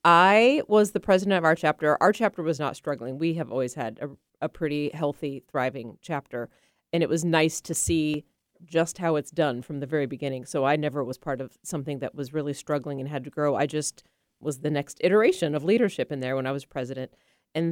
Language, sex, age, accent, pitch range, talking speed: English, female, 30-49, American, 145-180 Hz, 225 wpm